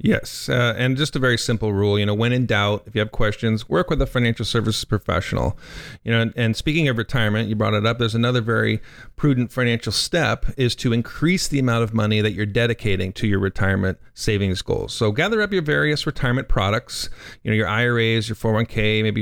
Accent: American